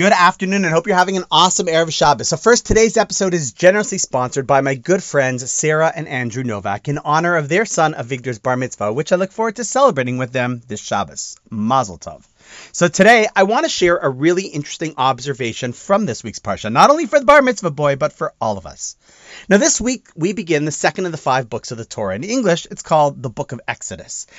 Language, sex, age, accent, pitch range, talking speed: English, male, 30-49, American, 135-195 Hz, 230 wpm